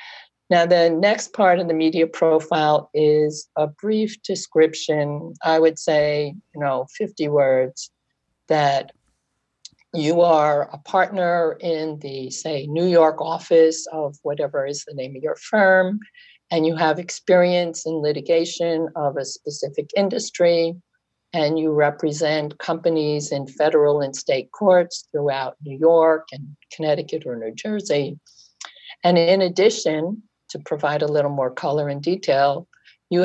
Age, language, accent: 50-69, English, American